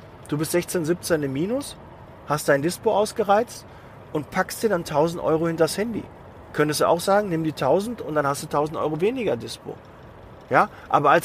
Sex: male